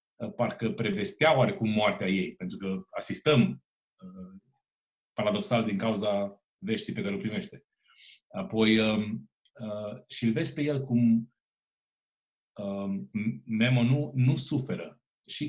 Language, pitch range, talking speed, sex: Romanian, 115-150 Hz, 125 wpm, male